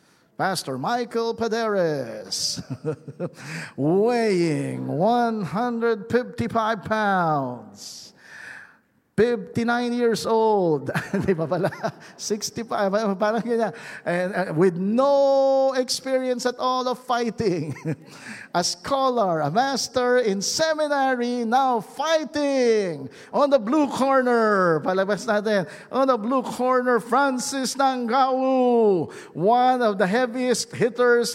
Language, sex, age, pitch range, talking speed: English, male, 50-69, 210-260 Hz, 90 wpm